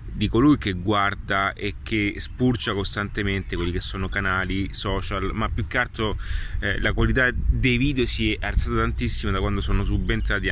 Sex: male